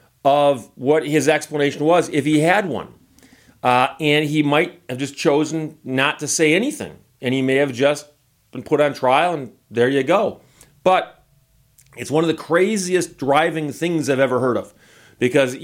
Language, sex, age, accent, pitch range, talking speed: English, male, 40-59, American, 120-160 Hz, 175 wpm